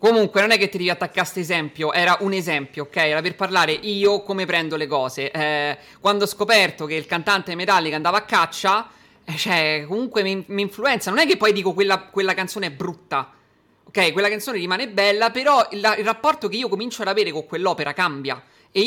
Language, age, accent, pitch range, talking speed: Italian, 20-39, native, 155-205 Hz, 205 wpm